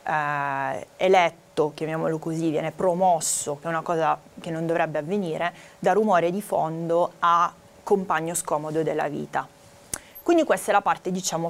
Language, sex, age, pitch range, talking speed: Italian, female, 30-49, 165-200 Hz, 150 wpm